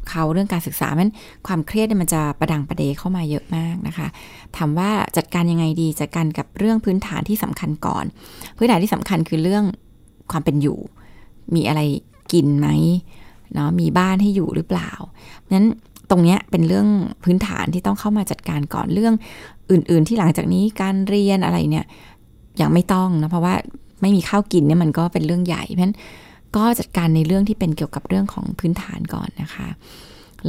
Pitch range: 155-195 Hz